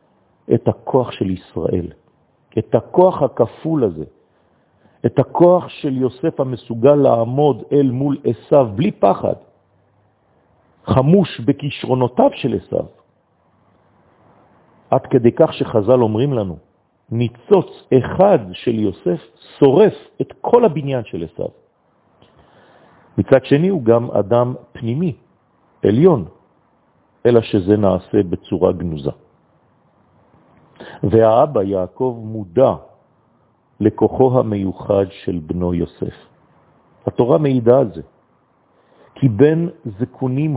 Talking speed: 90 wpm